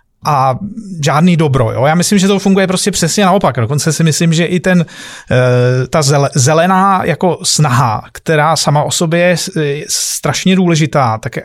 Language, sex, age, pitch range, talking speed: Czech, male, 30-49, 145-190 Hz, 155 wpm